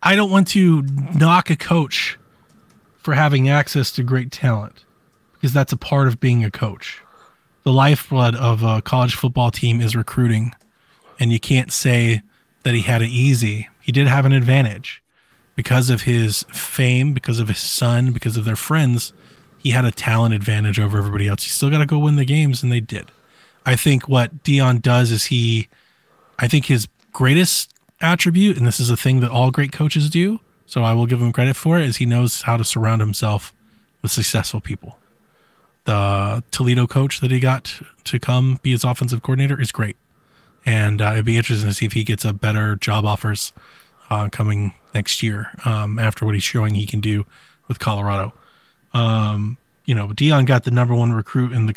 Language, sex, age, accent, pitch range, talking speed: English, male, 20-39, American, 110-135 Hz, 195 wpm